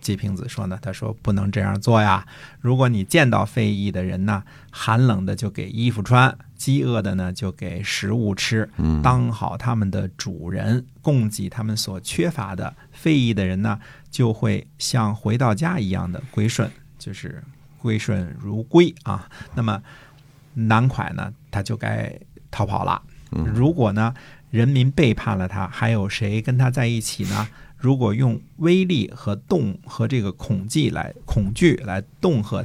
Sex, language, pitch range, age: male, Chinese, 100-135 Hz, 50-69